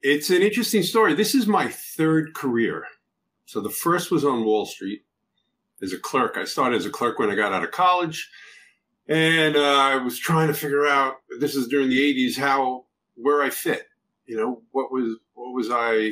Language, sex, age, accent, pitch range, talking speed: English, male, 50-69, American, 115-145 Hz, 200 wpm